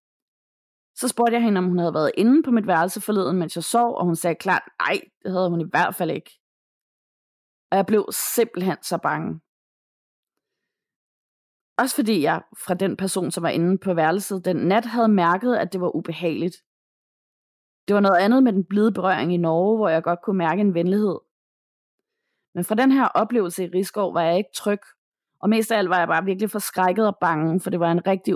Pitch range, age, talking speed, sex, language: 170-220 Hz, 20-39, 205 wpm, female, Danish